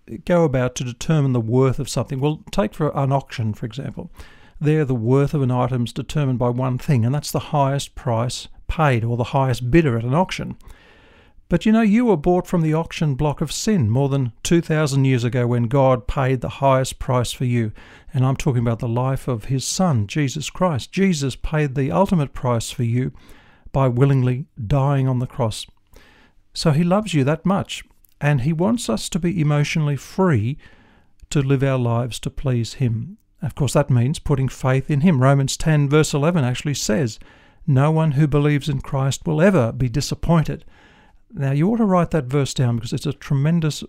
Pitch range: 125-155 Hz